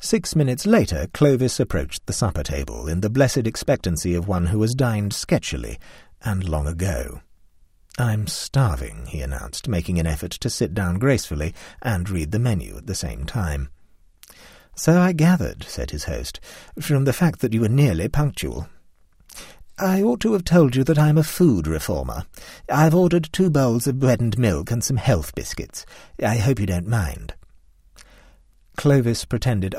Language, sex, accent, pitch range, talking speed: English, male, British, 80-130 Hz, 170 wpm